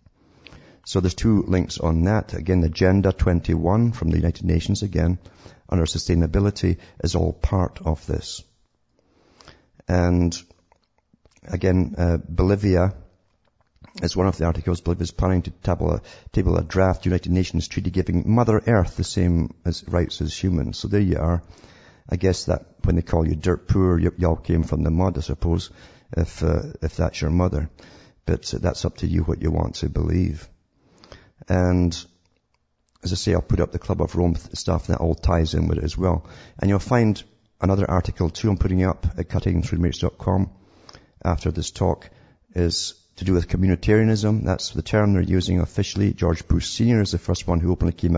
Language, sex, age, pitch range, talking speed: English, male, 50-69, 85-95 Hz, 180 wpm